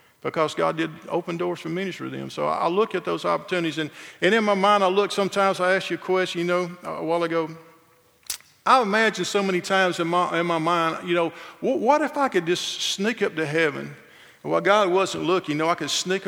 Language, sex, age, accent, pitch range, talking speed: English, male, 50-69, American, 150-180 Hz, 240 wpm